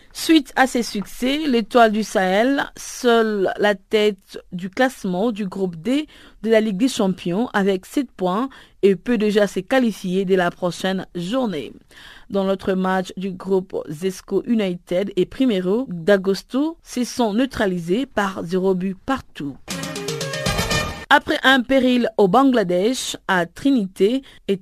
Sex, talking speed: female, 140 wpm